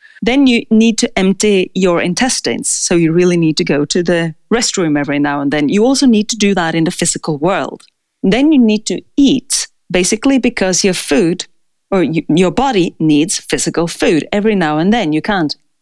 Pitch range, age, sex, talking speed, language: 175-255 Hz, 30-49, female, 195 wpm, English